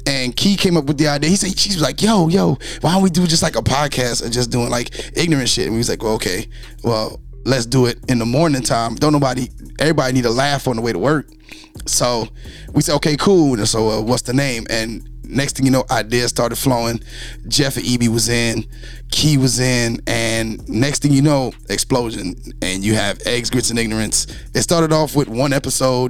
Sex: male